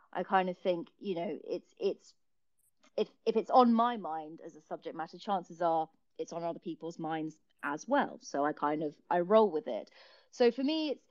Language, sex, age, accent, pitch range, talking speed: English, female, 30-49, British, 160-200 Hz, 210 wpm